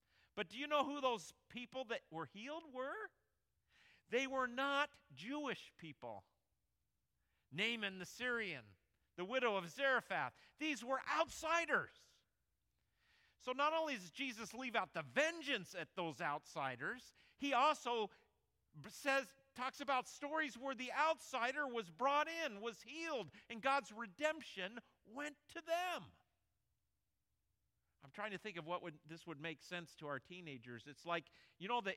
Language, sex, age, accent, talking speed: English, male, 50-69, American, 145 wpm